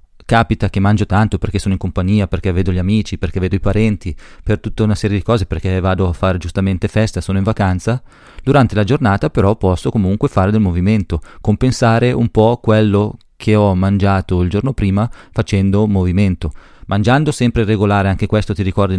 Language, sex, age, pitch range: Italian, male, 30-49, 95-110 Hz